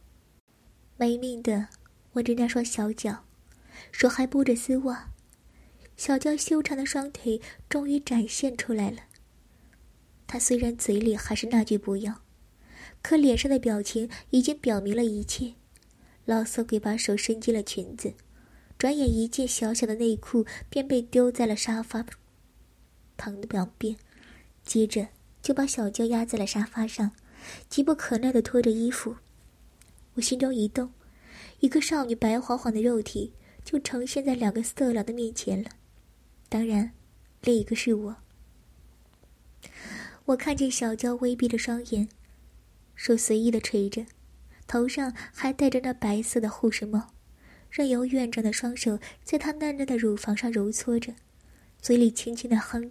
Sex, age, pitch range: male, 10-29, 220-255 Hz